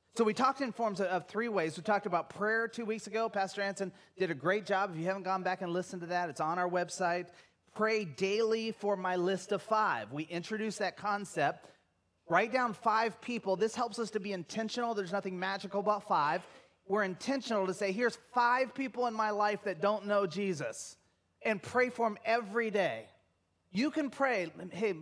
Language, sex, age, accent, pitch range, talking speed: English, male, 30-49, American, 170-220 Hz, 200 wpm